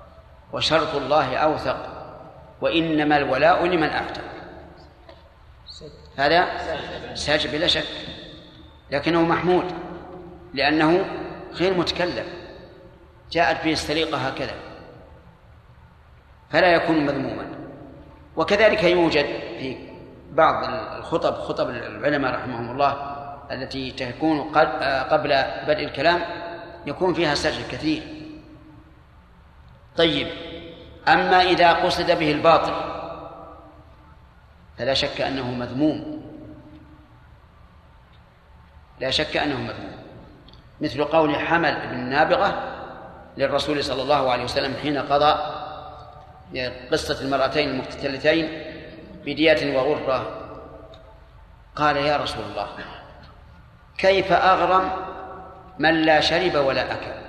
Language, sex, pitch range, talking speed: Arabic, male, 130-165 Hz, 85 wpm